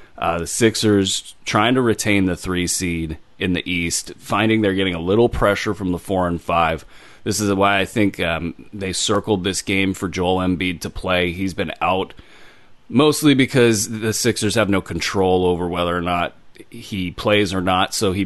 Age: 30-49